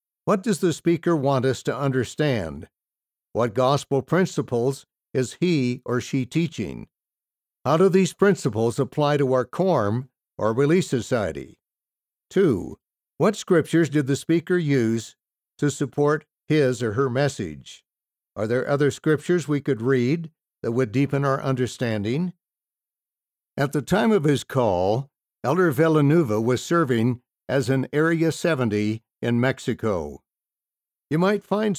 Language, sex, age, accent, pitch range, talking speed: English, male, 60-79, American, 125-155 Hz, 135 wpm